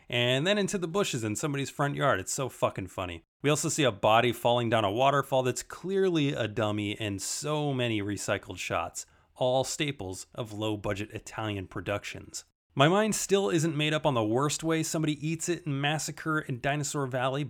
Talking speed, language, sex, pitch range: 190 wpm, English, male, 110-155 Hz